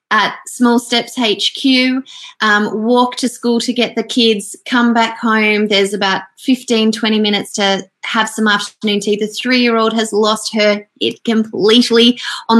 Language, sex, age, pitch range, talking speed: English, female, 20-39, 205-245 Hz, 155 wpm